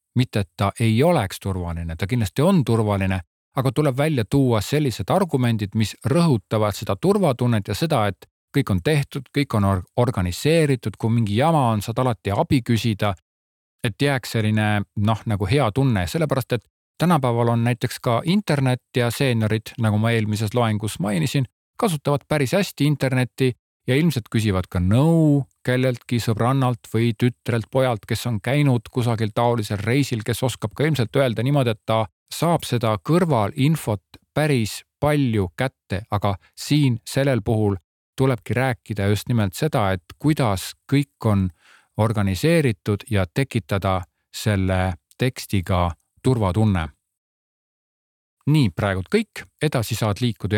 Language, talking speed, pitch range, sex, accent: Czech, 140 wpm, 105-135 Hz, male, Finnish